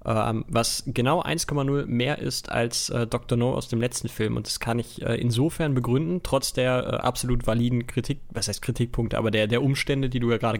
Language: German